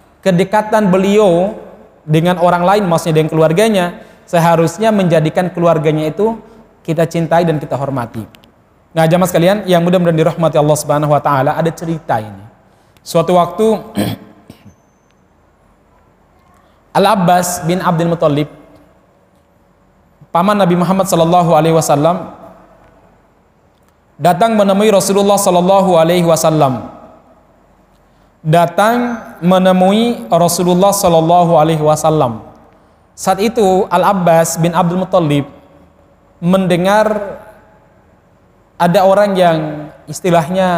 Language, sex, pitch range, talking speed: Indonesian, male, 160-195 Hz, 95 wpm